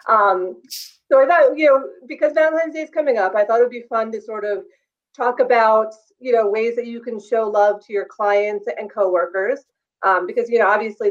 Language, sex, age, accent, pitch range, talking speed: English, female, 30-49, American, 195-260 Hz, 215 wpm